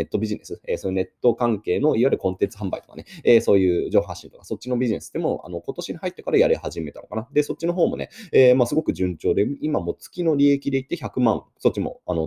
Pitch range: 95-155 Hz